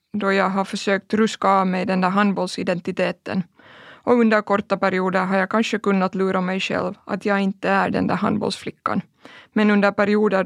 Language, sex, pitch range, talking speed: Swedish, female, 190-210 Hz, 180 wpm